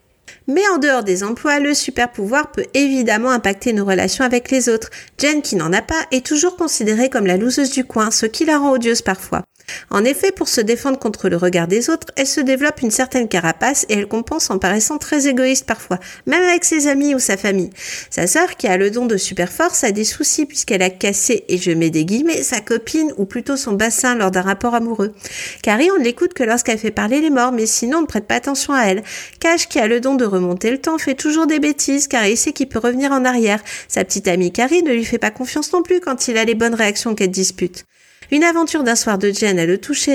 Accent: French